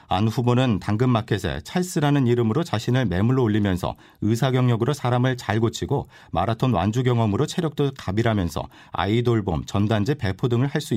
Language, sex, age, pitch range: Korean, male, 40-59, 100-135 Hz